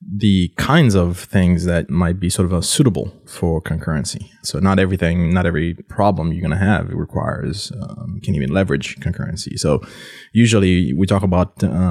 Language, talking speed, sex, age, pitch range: English, 180 wpm, male, 20-39, 85-100 Hz